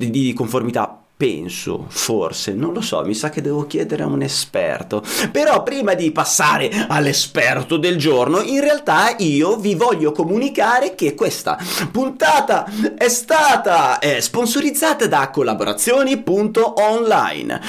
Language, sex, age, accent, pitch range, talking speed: Italian, male, 30-49, native, 130-205 Hz, 125 wpm